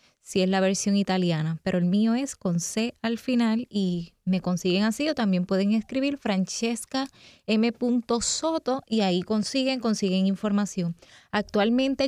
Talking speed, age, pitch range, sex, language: 140 wpm, 20-39, 185-225 Hz, female, Spanish